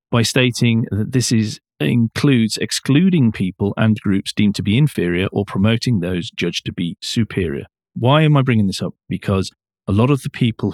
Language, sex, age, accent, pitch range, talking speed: English, male, 40-59, British, 95-125 Hz, 180 wpm